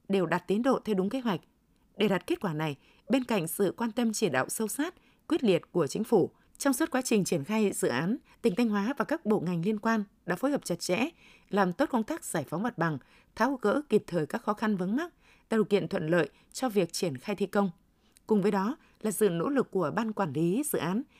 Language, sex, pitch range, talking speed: Vietnamese, female, 190-235 Hz, 255 wpm